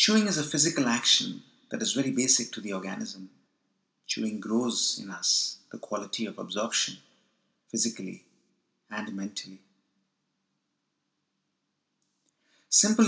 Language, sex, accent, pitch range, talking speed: English, male, Indian, 95-135 Hz, 110 wpm